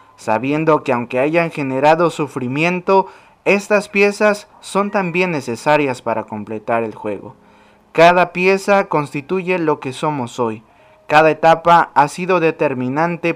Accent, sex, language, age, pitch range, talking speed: Mexican, male, Spanish, 20-39, 120-170 Hz, 120 wpm